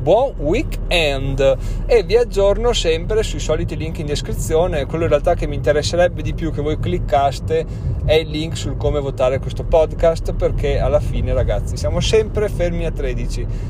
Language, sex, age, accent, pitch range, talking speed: Italian, male, 30-49, native, 110-145 Hz, 170 wpm